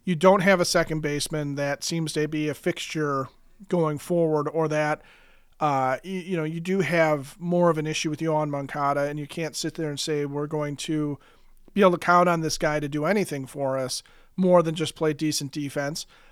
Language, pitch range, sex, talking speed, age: English, 145-175 Hz, male, 215 wpm, 40-59